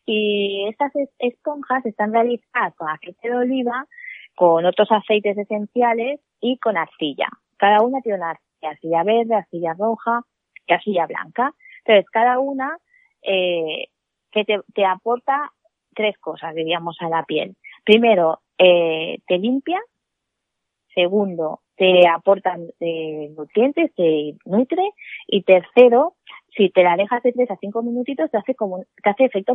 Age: 20-39